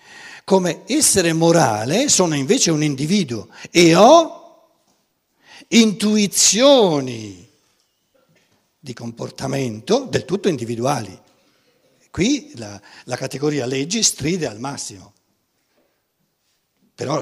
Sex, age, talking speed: male, 60-79, 85 wpm